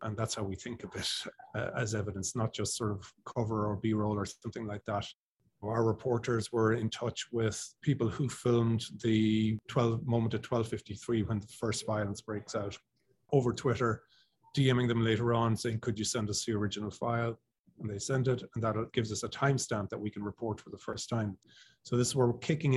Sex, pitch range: male, 110-125 Hz